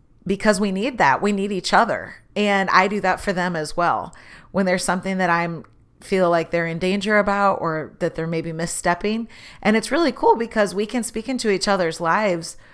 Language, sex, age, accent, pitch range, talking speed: English, female, 30-49, American, 170-215 Hz, 210 wpm